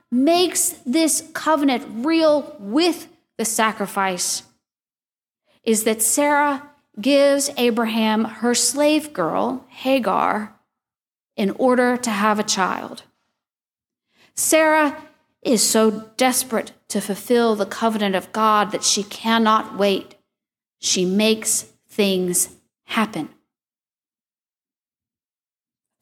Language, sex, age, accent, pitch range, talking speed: English, female, 40-59, American, 220-305 Hz, 95 wpm